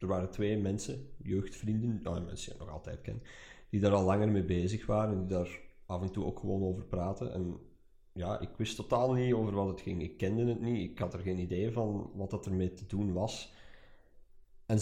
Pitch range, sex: 95-110 Hz, male